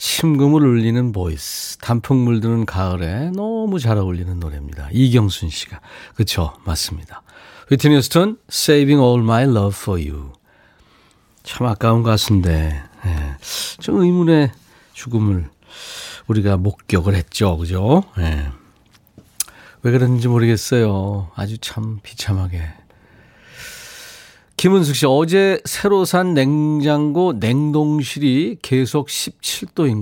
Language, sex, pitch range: Korean, male, 100-145 Hz